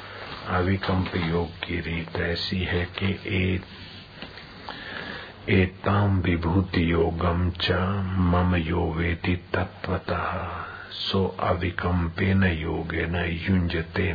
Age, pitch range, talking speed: 50-69, 85-95 Hz, 75 wpm